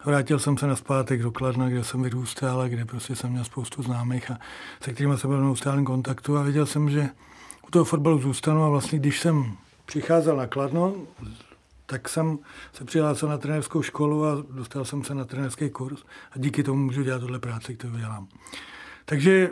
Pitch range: 135-165 Hz